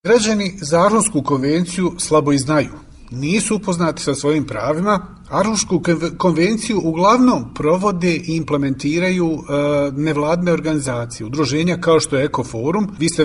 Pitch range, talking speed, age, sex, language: 150-190 Hz, 120 wpm, 40-59, male, English